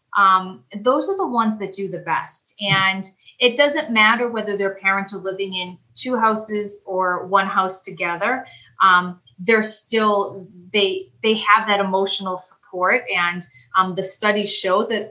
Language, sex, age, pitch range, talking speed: English, female, 30-49, 175-205 Hz, 160 wpm